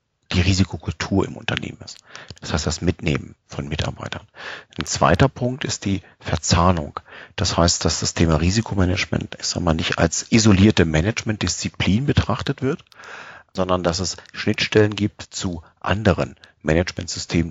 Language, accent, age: English, German, 40-59